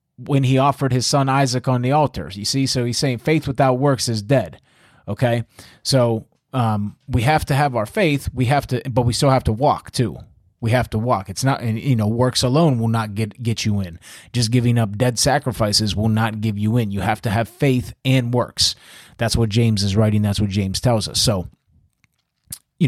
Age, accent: 30-49, American